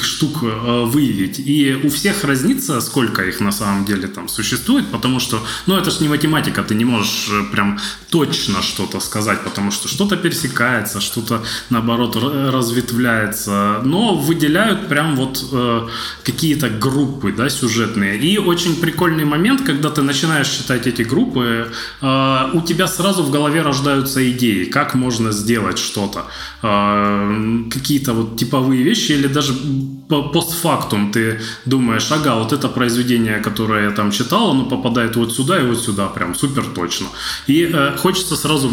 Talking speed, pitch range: 150 wpm, 110-145 Hz